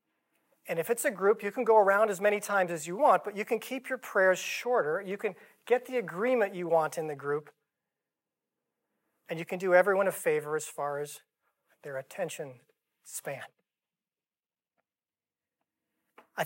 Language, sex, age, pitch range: English, male, 40-59, 160-205 Hz